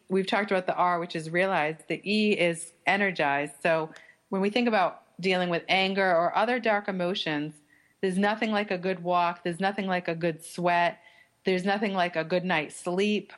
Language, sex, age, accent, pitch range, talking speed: English, female, 40-59, American, 160-195 Hz, 195 wpm